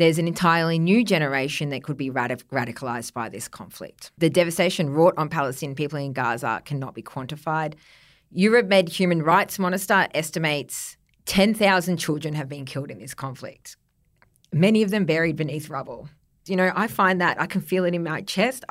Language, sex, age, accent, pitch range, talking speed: English, female, 30-49, Australian, 145-190 Hz, 175 wpm